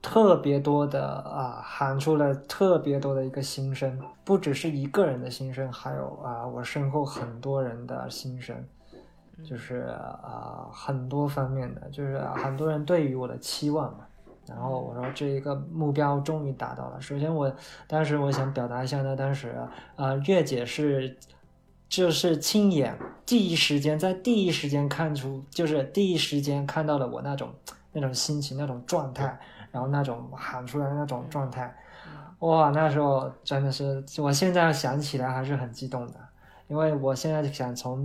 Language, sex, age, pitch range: Chinese, male, 20-39, 130-150 Hz